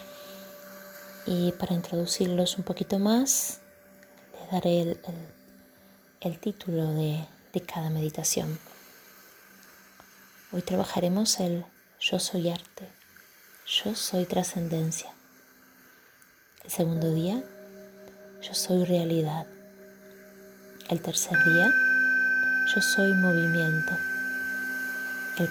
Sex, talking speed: female, 85 wpm